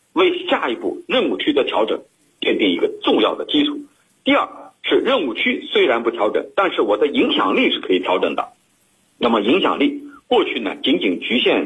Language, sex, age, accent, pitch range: Chinese, male, 50-69, native, 330-455 Hz